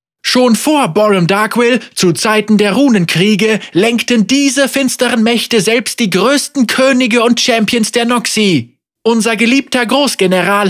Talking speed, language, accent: 130 wpm, German, German